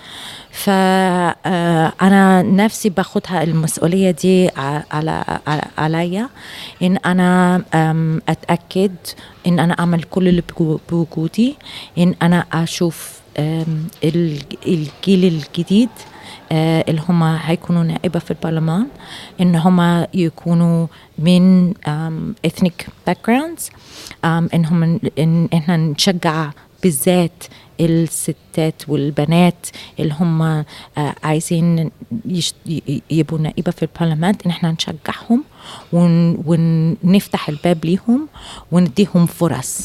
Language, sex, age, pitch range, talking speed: Arabic, female, 30-49, 160-185 Hz, 85 wpm